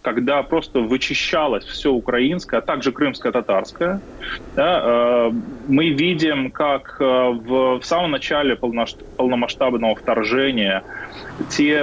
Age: 20-39